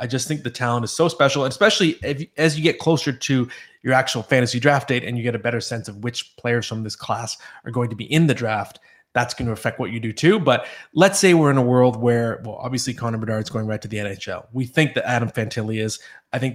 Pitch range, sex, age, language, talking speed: 120-150 Hz, male, 20-39, English, 260 wpm